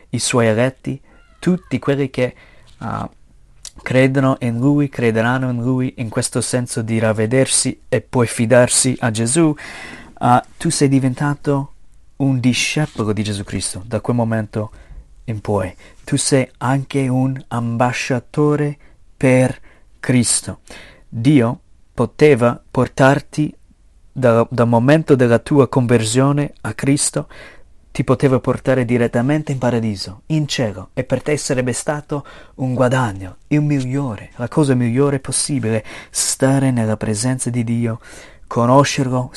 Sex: male